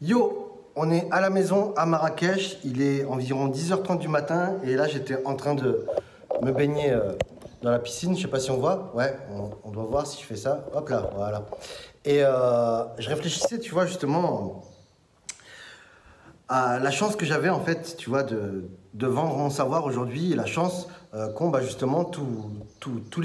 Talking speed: 190 wpm